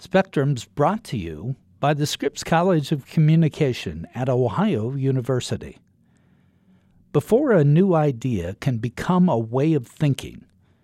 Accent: American